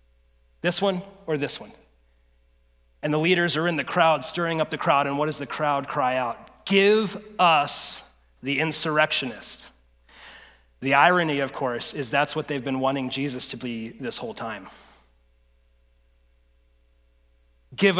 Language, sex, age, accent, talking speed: English, male, 30-49, American, 145 wpm